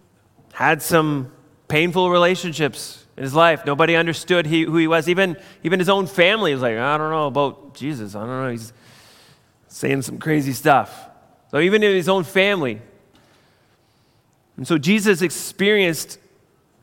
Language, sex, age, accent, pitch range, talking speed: English, male, 30-49, American, 150-205 Hz, 150 wpm